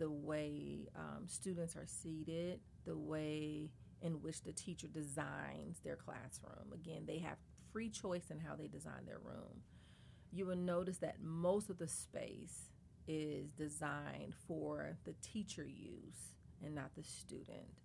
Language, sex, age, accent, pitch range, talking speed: English, female, 30-49, American, 150-175 Hz, 150 wpm